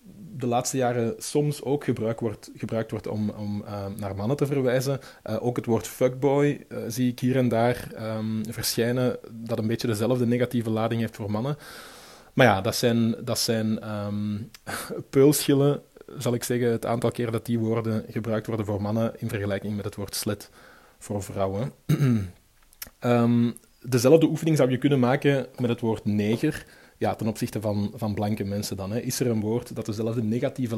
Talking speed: 170 wpm